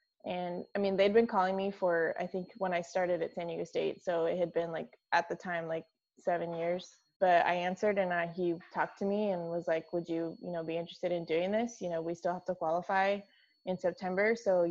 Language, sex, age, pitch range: English, female, 20-39, 170-195 Hz